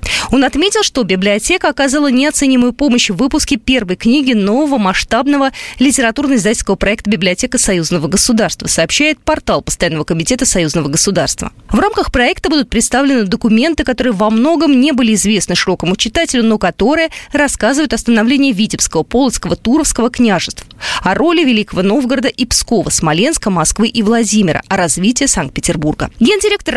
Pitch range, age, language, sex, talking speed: 185-275 Hz, 20-39, Russian, female, 135 wpm